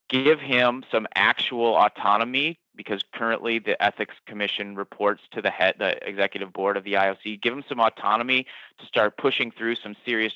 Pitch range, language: 105-120 Hz, English